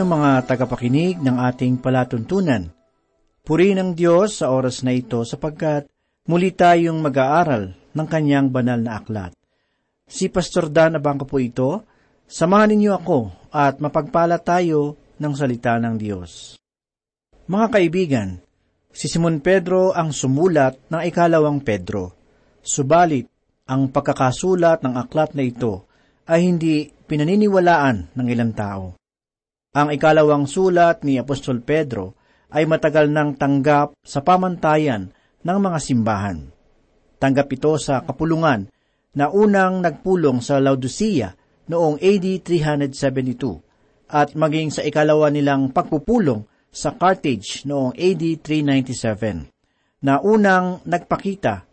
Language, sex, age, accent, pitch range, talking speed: Filipino, male, 50-69, native, 130-170 Hz, 120 wpm